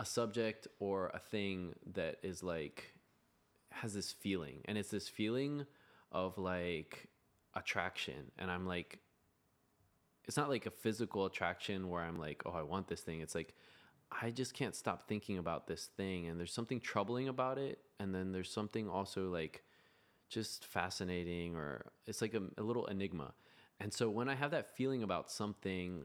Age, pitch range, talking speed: 20-39, 85-105 Hz, 175 wpm